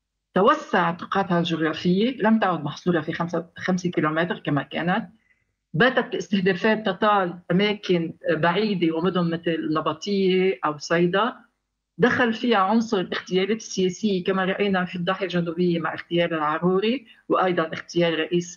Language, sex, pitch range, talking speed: Arabic, female, 170-215 Hz, 125 wpm